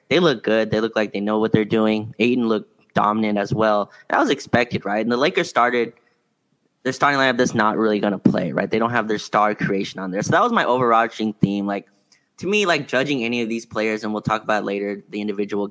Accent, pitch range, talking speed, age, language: American, 105-125 Hz, 245 wpm, 20-39, English